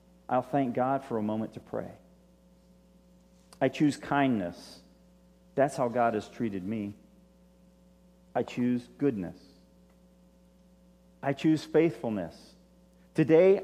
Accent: American